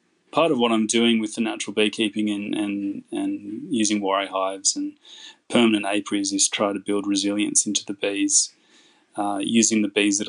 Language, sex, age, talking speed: English, male, 20-39, 180 wpm